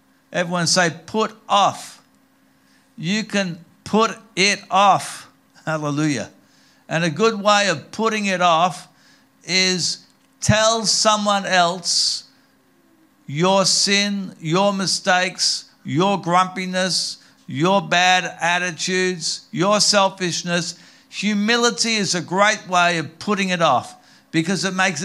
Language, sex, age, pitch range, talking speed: English, male, 60-79, 170-210 Hz, 110 wpm